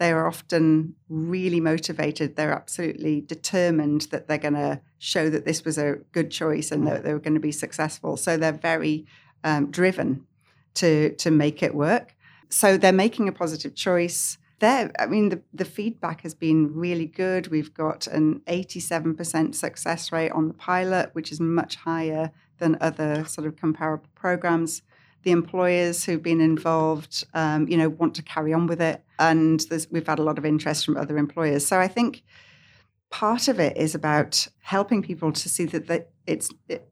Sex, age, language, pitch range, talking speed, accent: female, 40-59, English, 155-175 Hz, 180 wpm, British